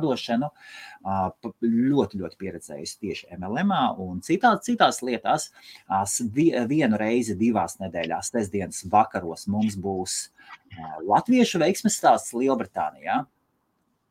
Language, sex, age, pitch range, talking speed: English, male, 30-49, 90-120 Hz, 95 wpm